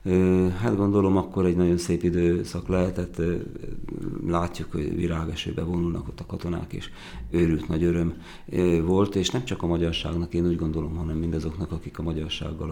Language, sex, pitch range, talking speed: Hungarian, male, 85-95 Hz, 155 wpm